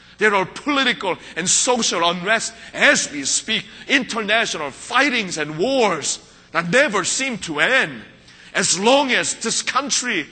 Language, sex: Korean, male